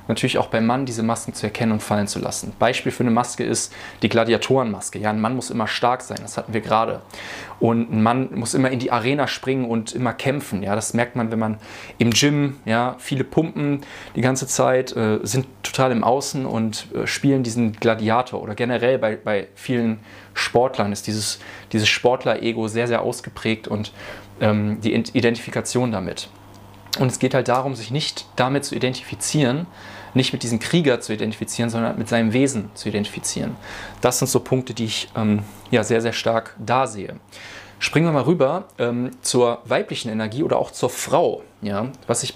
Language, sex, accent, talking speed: German, male, German, 185 wpm